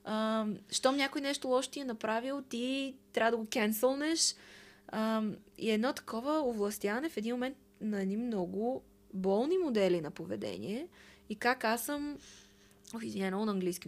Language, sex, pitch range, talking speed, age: Bulgarian, female, 180-225 Hz, 145 wpm, 20-39